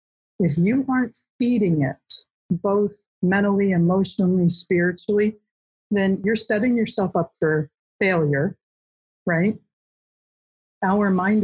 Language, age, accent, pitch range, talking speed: English, 50-69, American, 165-200 Hz, 100 wpm